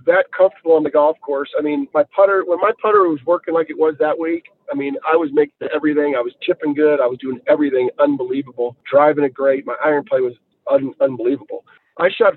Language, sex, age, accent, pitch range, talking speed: English, male, 40-59, American, 150-190 Hz, 220 wpm